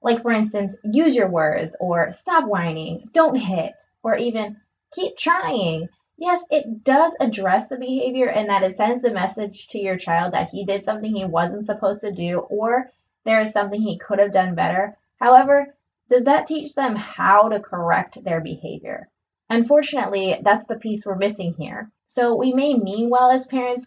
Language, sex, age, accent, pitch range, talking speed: English, female, 20-39, American, 195-255 Hz, 180 wpm